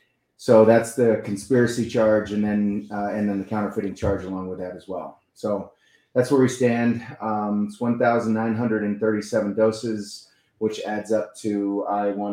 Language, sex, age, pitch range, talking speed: English, male, 30-49, 100-110 Hz, 185 wpm